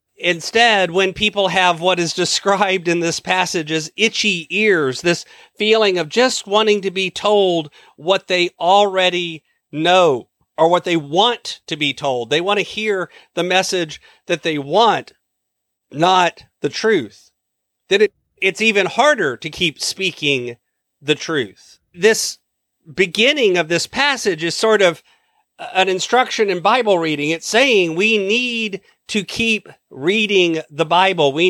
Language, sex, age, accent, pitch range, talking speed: English, male, 40-59, American, 170-215 Hz, 145 wpm